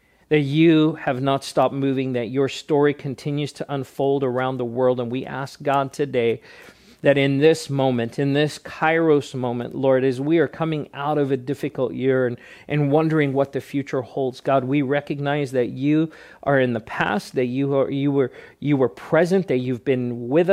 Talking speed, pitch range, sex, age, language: 195 wpm, 125-155 Hz, male, 40-59, English